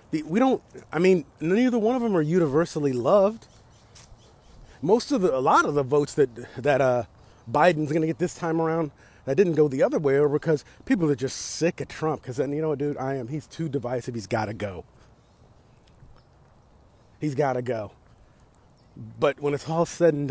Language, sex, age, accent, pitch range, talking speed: English, male, 40-59, American, 125-170 Hz, 200 wpm